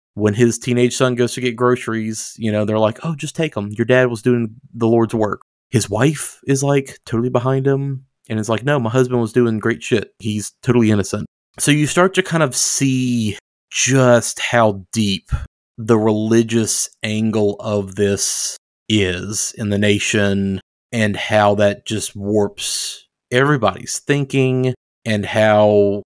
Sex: male